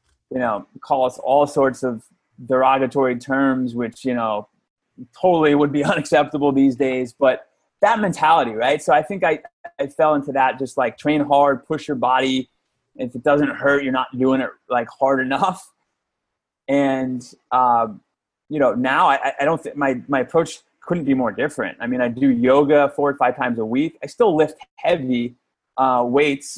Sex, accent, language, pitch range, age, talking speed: male, American, English, 130-150 Hz, 20-39, 185 wpm